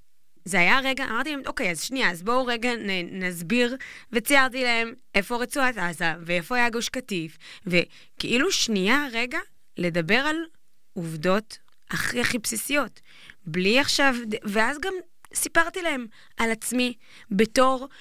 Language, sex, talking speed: Hebrew, female, 130 wpm